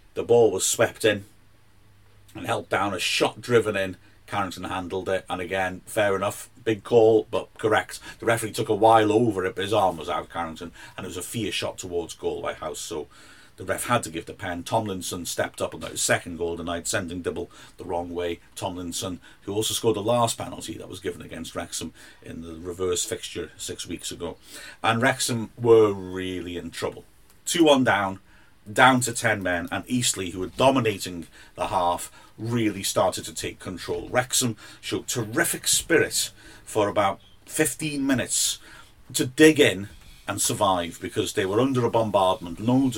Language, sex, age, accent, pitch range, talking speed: English, male, 50-69, British, 100-125 Hz, 185 wpm